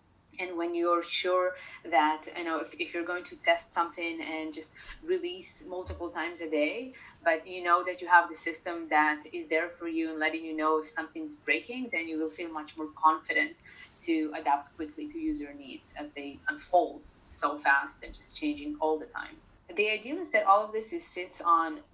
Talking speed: 200 wpm